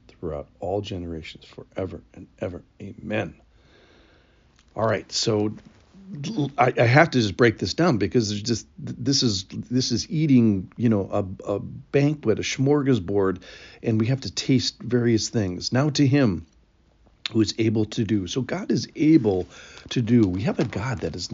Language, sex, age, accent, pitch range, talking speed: English, male, 50-69, American, 95-130 Hz, 170 wpm